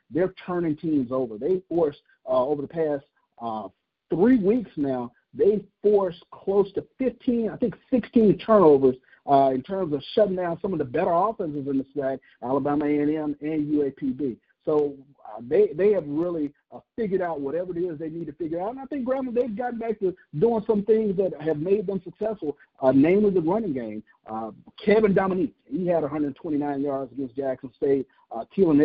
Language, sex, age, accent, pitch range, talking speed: English, male, 50-69, American, 135-205 Hz, 190 wpm